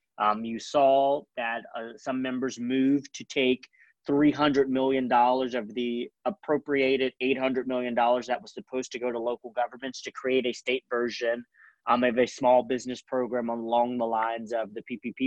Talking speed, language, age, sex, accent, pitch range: 165 wpm, English, 30-49, male, American, 125-170 Hz